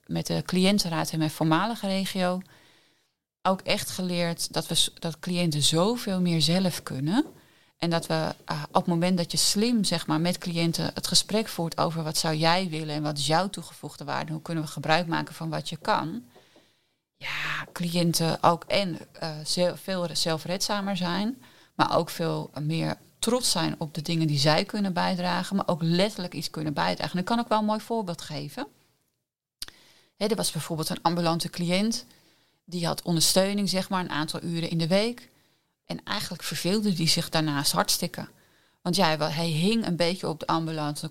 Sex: female